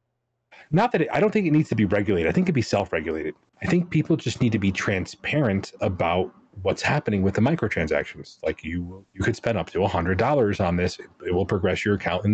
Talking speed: 230 wpm